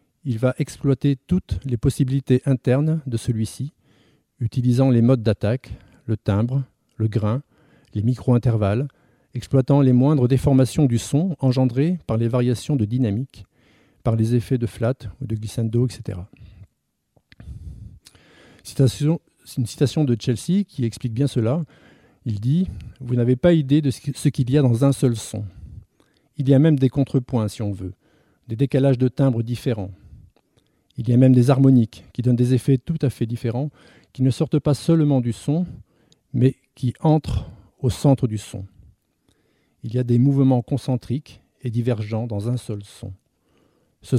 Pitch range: 115-140 Hz